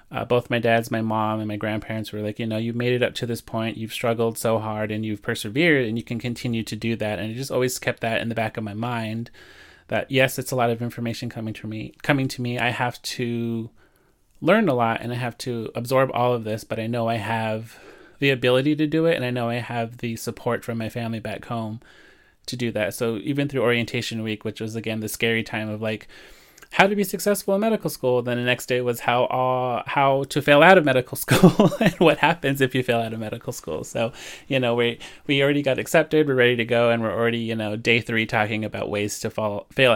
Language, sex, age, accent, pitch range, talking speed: English, male, 30-49, American, 110-125 Hz, 250 wpm